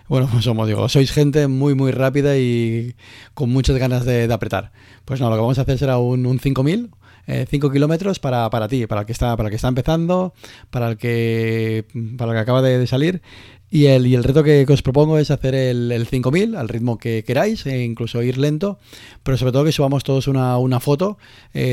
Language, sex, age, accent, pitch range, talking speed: Spanish, male, 30-49, Spanish, 115-135 Hz, 230 wpm